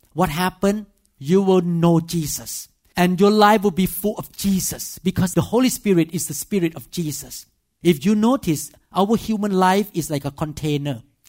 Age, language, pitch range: 50-69, English, 160-225 Hz